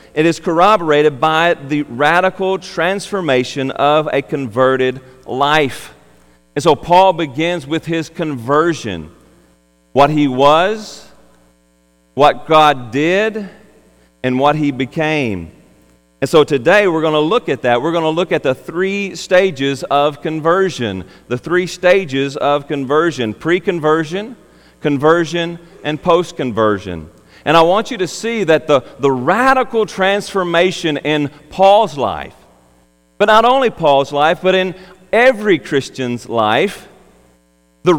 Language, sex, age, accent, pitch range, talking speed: English, male, 40-59, American, 130-185 Hz, 130 wpm